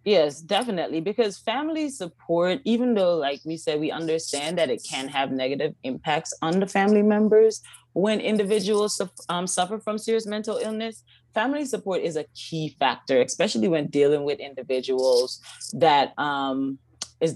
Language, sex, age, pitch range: English, female, 20-39, 140-180 Hz